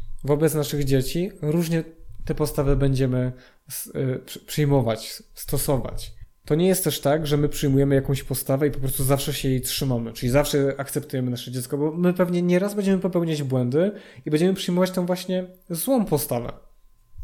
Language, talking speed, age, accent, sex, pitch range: Polish, 155 wpm, 20-39, native, male, 130-160 Hz